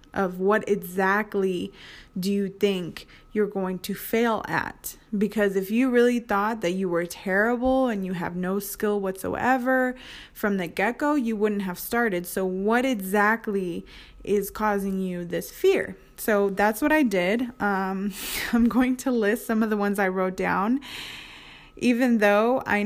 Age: 20-39